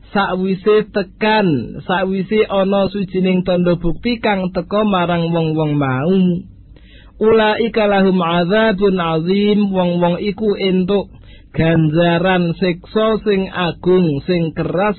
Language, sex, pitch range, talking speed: Malay, male, 150-185 Hz, 110 wpm